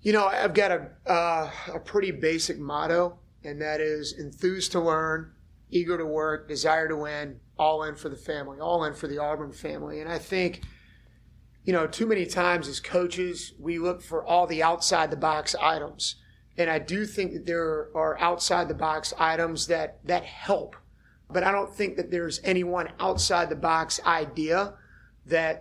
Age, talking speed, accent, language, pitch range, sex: 30-49, 185 wpm, American, English, 155-175 Hz, male